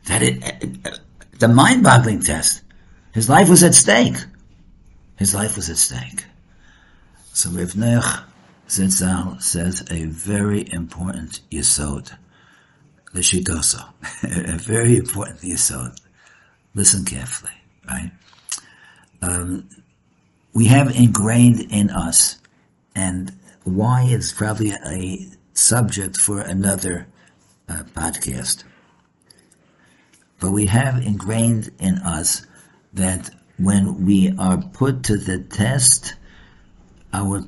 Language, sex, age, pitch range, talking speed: English, male, 60-79, 85-105 Hz, 100 wpm